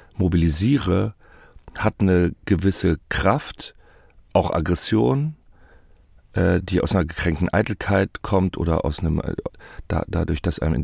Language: German